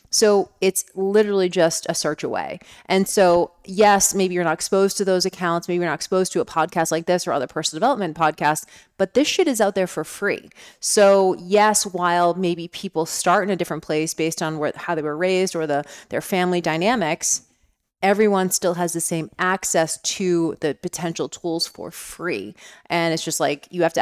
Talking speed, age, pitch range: 200 wpm, 30-49, 165-205 Hz